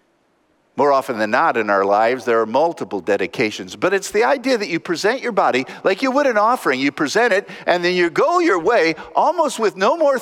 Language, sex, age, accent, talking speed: English, male, 50-69, American, 225 wpm